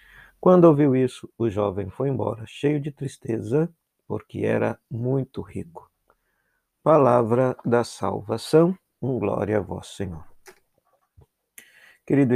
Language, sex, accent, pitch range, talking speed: Portuguese, male, Brazilian, 110-145 Hz, 110 wpm